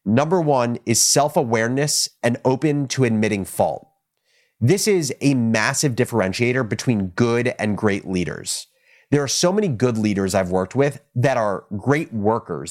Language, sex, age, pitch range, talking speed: English, male, 30-49, 105-140 Hz, 150 wpm